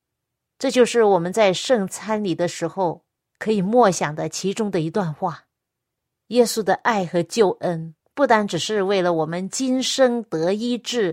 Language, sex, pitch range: Chinese, female, 170-240 Hz